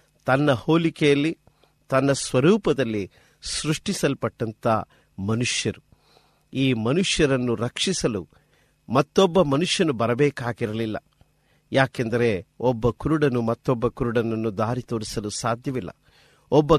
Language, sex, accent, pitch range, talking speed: Kannada, male, native, 110-150 Hz, 75 wpm